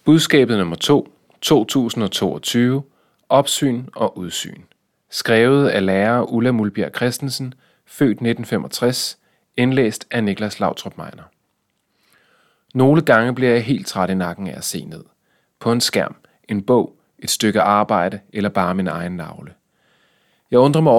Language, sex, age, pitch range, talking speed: Danish, male, 30-49, 105-130 Hz, 135 wpm